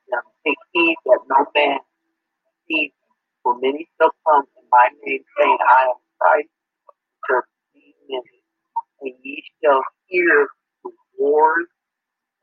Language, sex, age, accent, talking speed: English, male, 50-69, American, 110 wpm